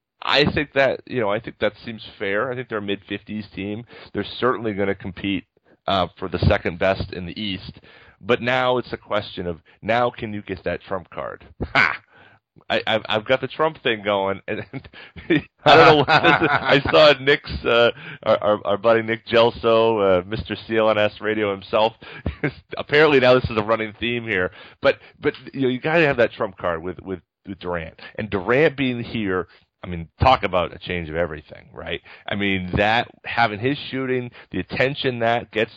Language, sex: English, male